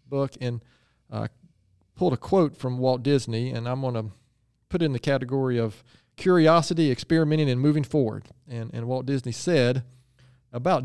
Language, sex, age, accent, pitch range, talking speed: English, male, 40-59, American, 120-150 Hz, 160 wpm